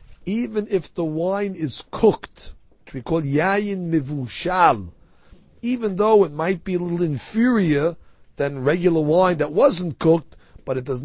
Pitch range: 140-190 Hz